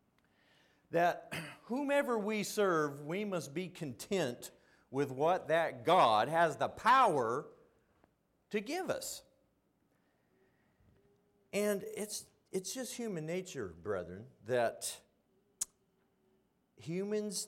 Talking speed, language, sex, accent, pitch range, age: 95 wpm, English, male, American, 120-175 Hz, 50-69